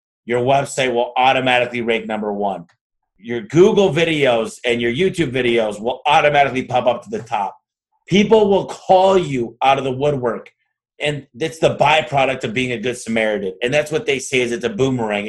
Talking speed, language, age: 185 wpm, English, 30-49